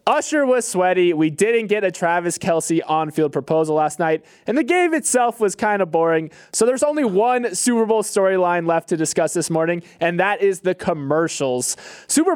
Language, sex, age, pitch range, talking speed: English, male, 20-39, 145-190 Hz, 190 wpm